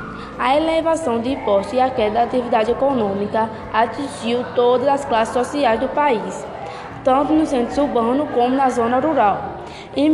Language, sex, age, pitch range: Portuguese, female, 20-39, 230-270 Hz